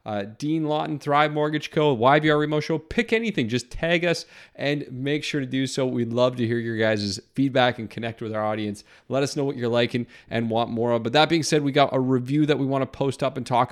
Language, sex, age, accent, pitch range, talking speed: English, male, 30-49, American, 110-145 Hz, 255 wpm